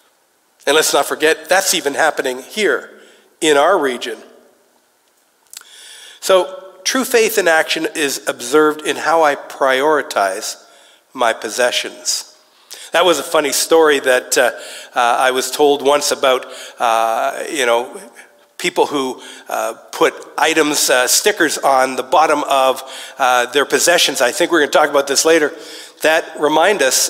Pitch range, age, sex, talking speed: 130-185 Hz, 50-69, male, 145 wpm